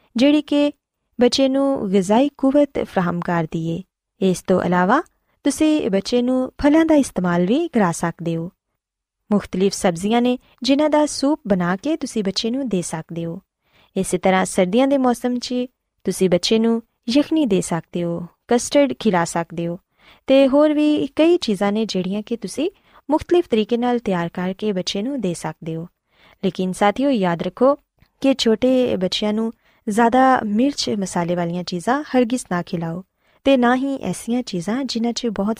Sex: female